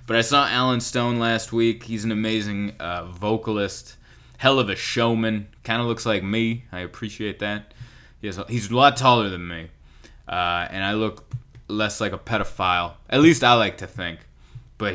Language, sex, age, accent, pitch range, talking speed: English, male, 20-39, American, 105-145 Hz, 190 wpm